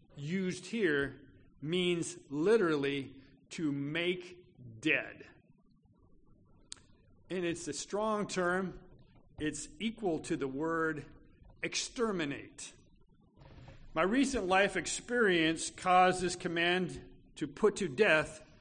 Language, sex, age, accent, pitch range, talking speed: English, male, 50-69, American, 130-180 Hz, 95 wpm